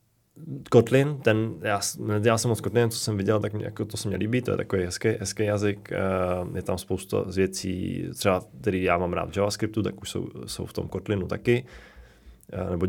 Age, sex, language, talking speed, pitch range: 20-39, male, Czech, 190 wpm, 95-110 Hz